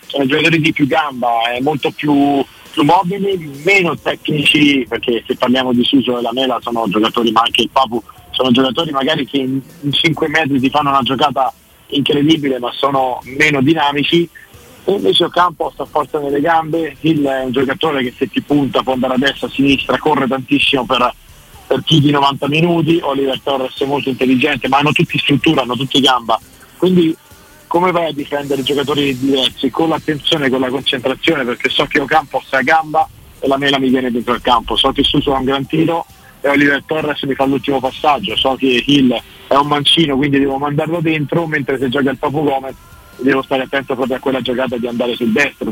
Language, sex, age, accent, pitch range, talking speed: Italian, male, 40-59, native, 130-150 Hz, 200 wpm